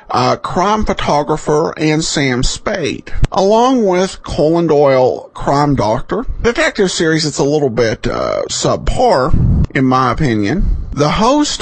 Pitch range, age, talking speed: 130-195 Hz, 50-69, 130 wpm